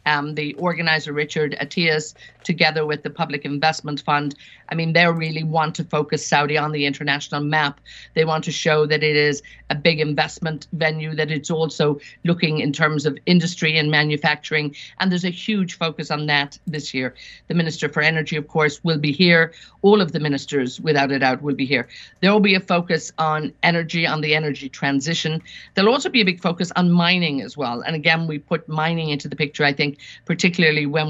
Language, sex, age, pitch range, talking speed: English, female, 50-69, 150-170 Hz, 205 wpm